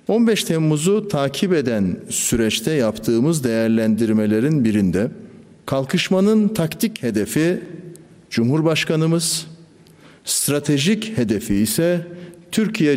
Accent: native